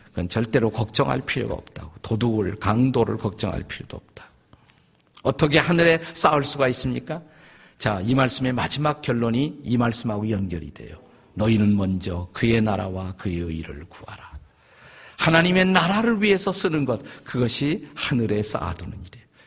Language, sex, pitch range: Korean, male, 105-145 Hz